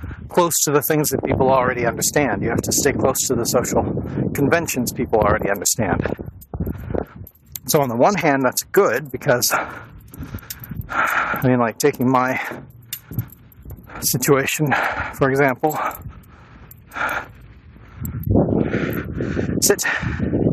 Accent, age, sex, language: American, 40-59, male, English